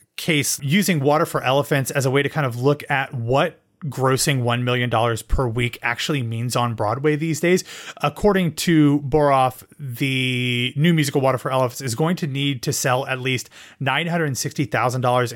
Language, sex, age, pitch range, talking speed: English, male, 30-49, 125-155 Hz, 170 wpm